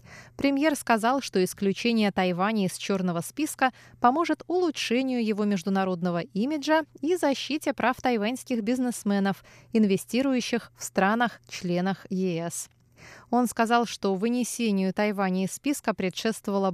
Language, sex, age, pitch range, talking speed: Russian, female, 20-39, 180-245 Hz, 110 wpm